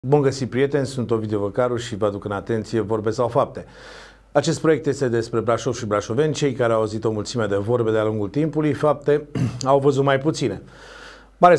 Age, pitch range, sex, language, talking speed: 40-59, 120-145 Hz, male, Romanian, 195 wpm